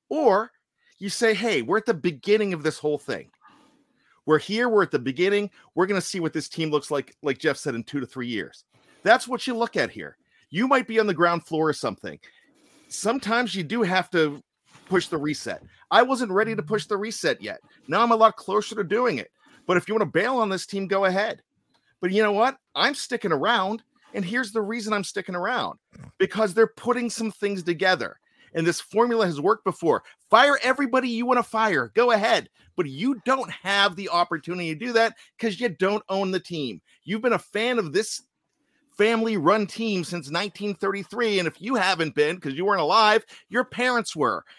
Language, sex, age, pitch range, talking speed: English, male, 40-59, 180-235 Hz, 210 wpm